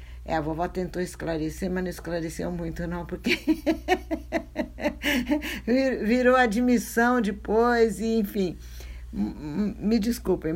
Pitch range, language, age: 160-225 Hz, Portuguese, 60-79